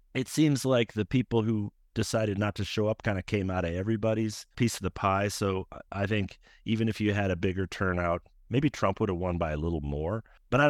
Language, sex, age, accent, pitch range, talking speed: English, male, 40-59, American, 95-115 Hz, 235 wpm